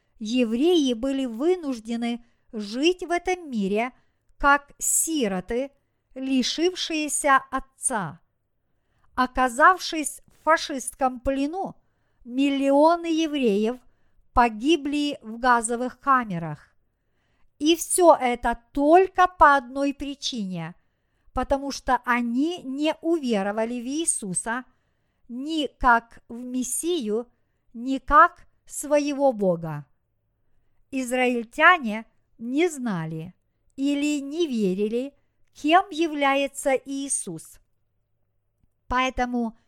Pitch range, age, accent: 215-295 Hz, 50-69, native